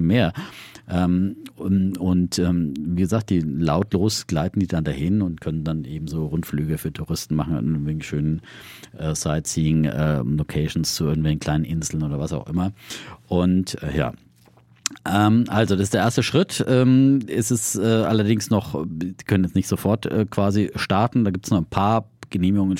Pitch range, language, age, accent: 75-100 Hz, German, 50-69, German